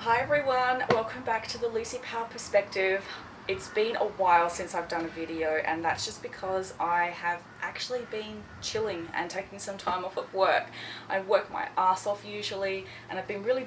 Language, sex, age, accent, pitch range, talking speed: English, female, 20-39, Australian, 165-210 Hz, 195 wpm